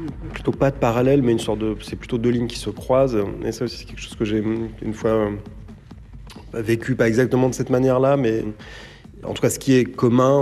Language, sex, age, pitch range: French, male, 30-49, 100-115 Hz